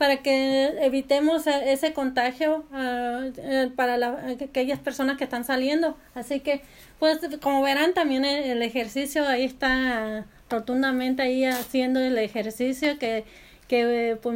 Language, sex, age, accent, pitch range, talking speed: Spanish, female, 30-49, American, 240-280 Hz, 130 wpm